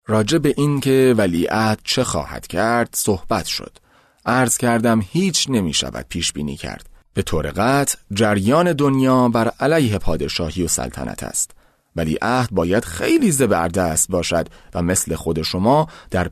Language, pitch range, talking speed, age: Persian, 90-130 Hz, 145 wpm, 30-49